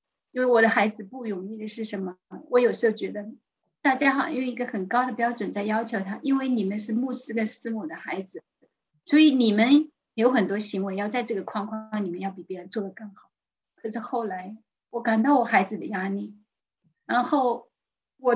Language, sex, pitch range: Chinese, female, 210-265 Hz